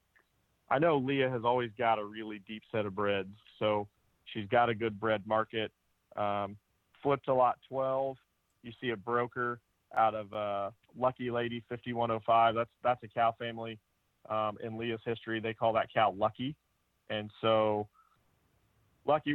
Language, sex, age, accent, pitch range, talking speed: English, male, 40-59, American, 110-120 Hz, 160 wpm